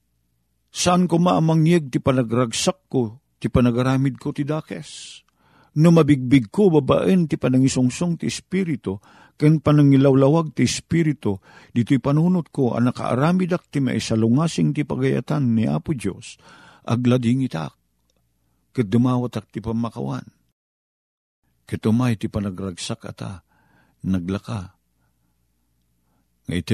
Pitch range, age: 90-125 Hz, 50-69